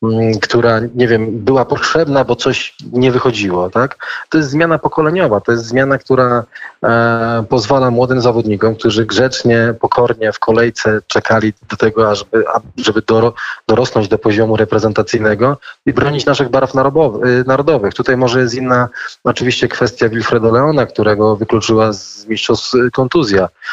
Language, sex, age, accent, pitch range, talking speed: Polish, male, 20-39, native, 110-125 Hz, 135 wpm